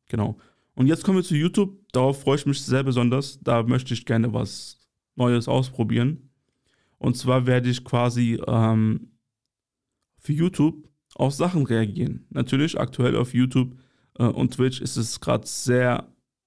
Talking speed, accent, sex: 155 wpm, German, male